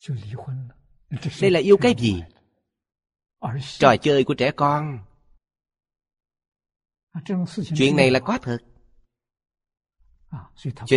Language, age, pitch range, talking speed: Vietnamese, 30-49, 100-140 Hz, 90 wpm